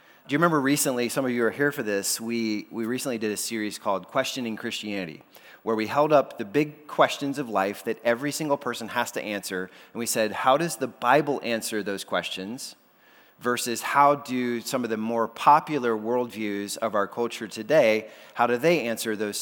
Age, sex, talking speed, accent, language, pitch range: 30-49, male, 200 wpm, American, English, 110-145 Hz